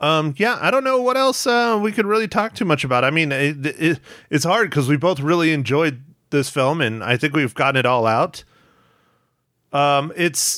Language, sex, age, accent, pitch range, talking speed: English, male, 30-49, American, 140-175 Hz, 215 wpm